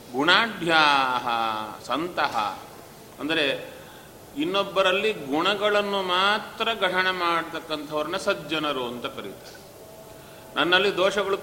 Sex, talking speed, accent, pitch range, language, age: male, 70 wpm, native, 135-200 Hz, Kannada, 30-49